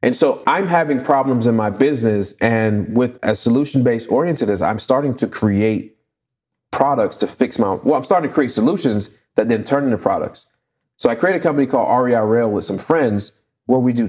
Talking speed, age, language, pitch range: 195 wpm, 30-49, English, 100-125 Hz